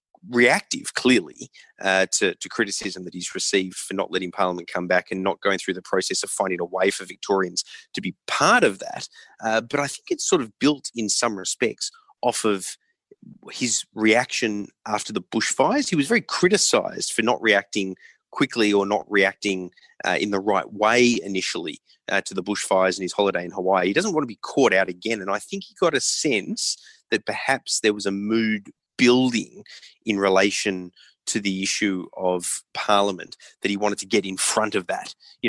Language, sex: English, male